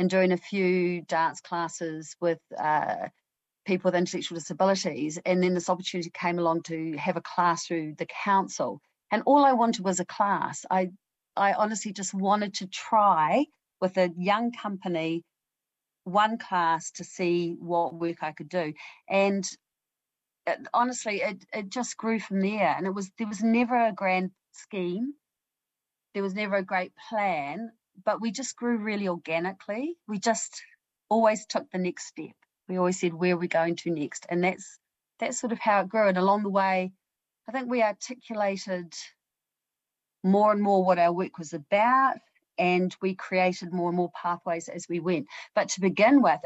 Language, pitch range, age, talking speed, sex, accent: English, 170-210 Hz, 40-59, 175 wpm, female, Australian